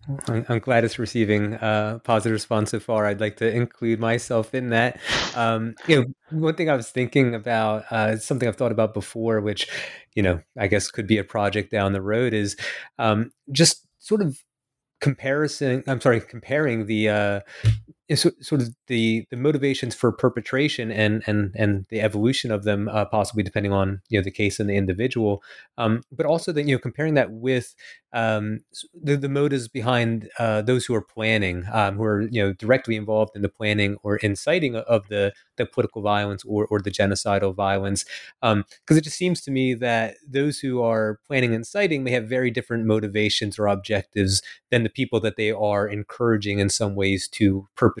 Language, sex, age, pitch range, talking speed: English, male, 30-49, 105-125 Hz, 195 wpm